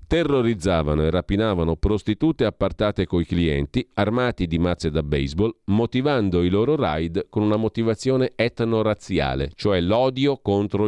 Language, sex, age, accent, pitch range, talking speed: Italian, male, 40-59, native, 85-115 Hz, 125 wpm